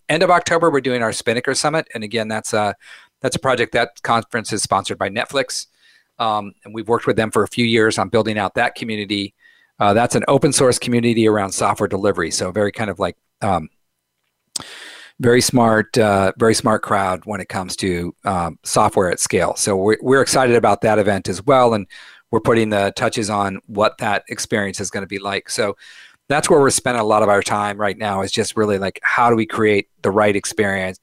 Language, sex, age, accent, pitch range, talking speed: English, male, 40-59, American, 100-120 Hz, 215 wpm